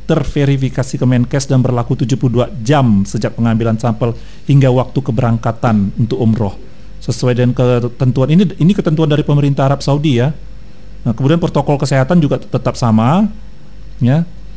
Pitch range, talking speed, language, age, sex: 125-140 Hz, 135 wpm, Indonesian, 40-59, male